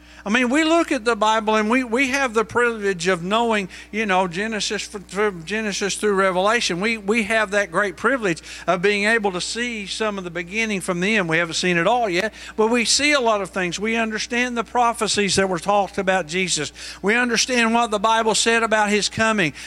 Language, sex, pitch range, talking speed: English, male, 170-225 Hz, 215 wpm